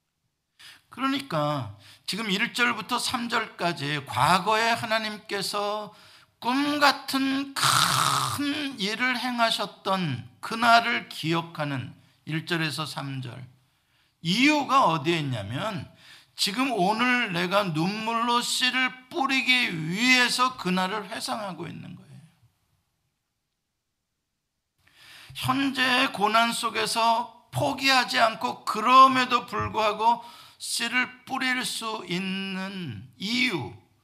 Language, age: Korean, 50-69